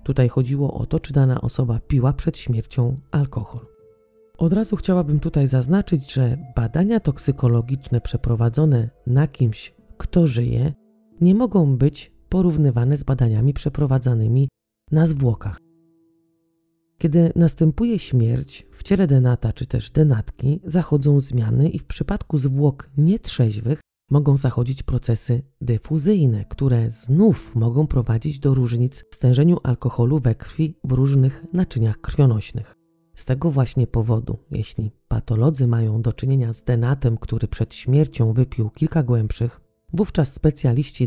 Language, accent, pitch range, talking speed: Polish, native, 120-155 Hz, 125 wpm